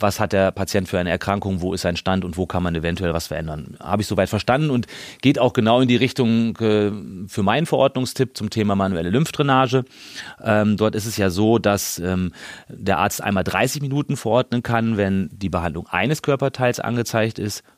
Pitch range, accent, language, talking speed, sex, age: 100-125 Hz, German, German, 190 wpm, male, 30-49